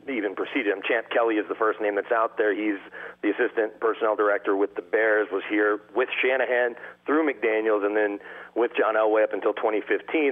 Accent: American